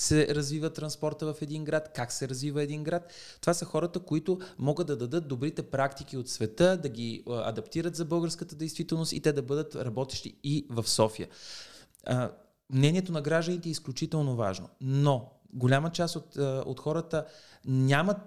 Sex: male